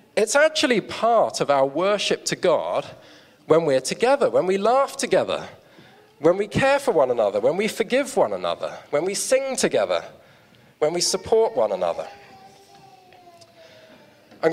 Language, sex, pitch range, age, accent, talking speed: English, male, 160-230 Hz, 40-59, British, 150 wpm